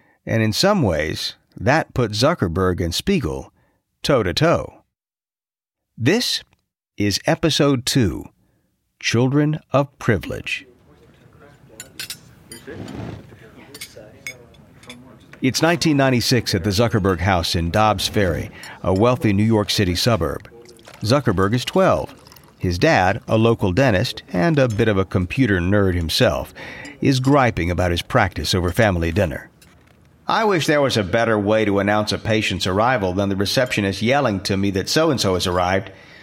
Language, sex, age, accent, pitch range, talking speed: English, male, 50-69, American, 95-130 Hz, 130 wpm